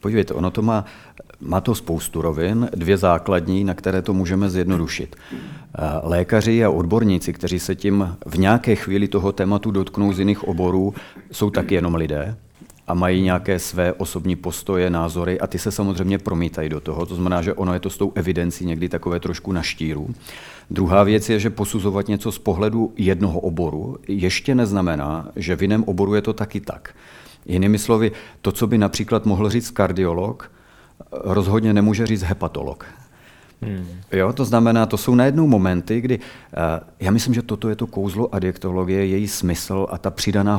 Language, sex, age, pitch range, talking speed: Czech, male, 40-59, 90-105 Hz, 170 wpm